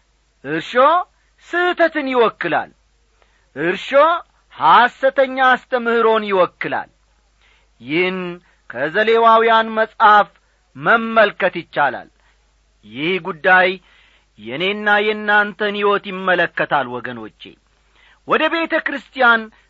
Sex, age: male, 40-59